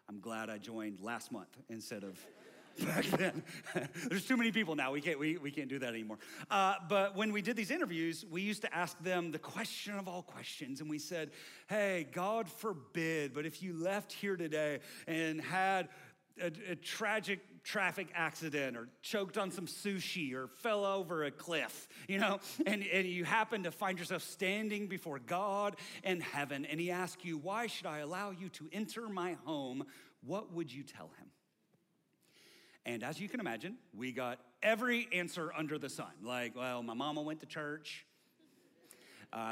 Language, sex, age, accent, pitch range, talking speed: English, male, 40-59, American, 150-200 Hz, 185 wpm